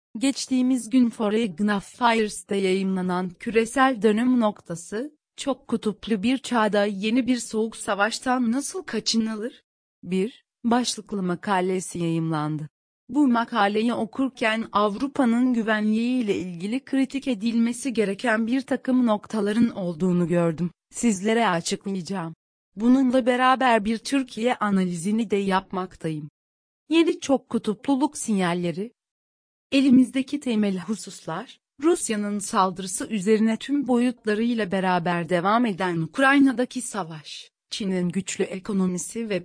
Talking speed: 100 wpm